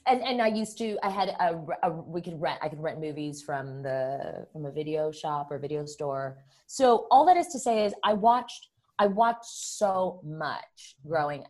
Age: 30-49